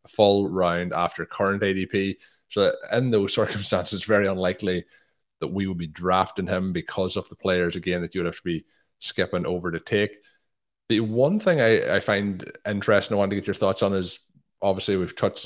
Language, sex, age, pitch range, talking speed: English, male, 20-39, 90-100 Hz, 195 wpm